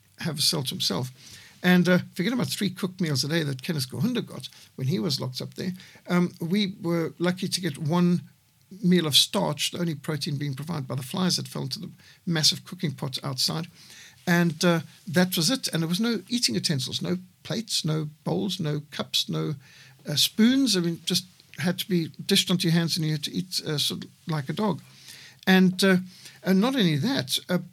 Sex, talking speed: male, 210 wpm